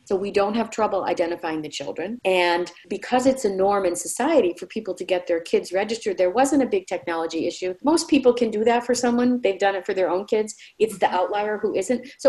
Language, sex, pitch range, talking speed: English, female, 175-245 Hz, 235 wpm